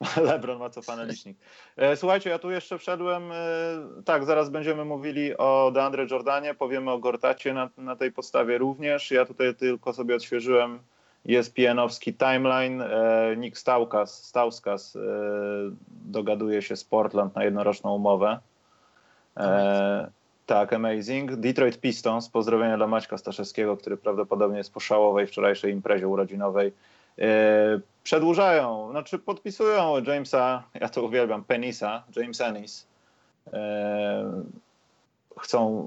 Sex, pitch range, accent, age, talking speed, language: male, 110-145 Hz, native, 30-49, 115 wpm, Polish